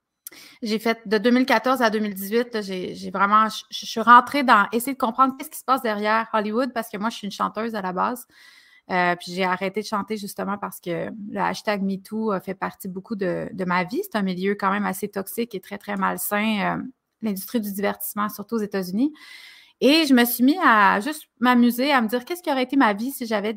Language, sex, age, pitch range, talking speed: French, female, 30-49, 200-245 Hz, 230 wpm